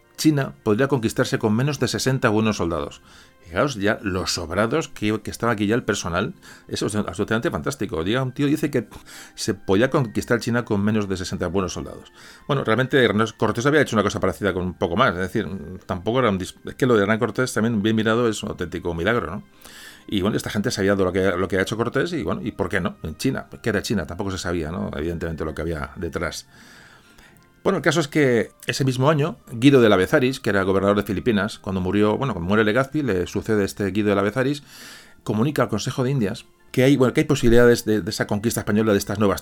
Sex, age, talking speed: male, 40-59, 230 wpm